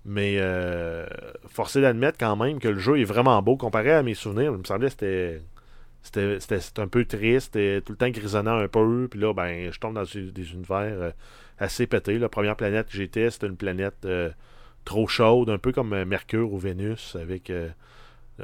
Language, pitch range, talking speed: French, 100-120 Hz, 205 wpm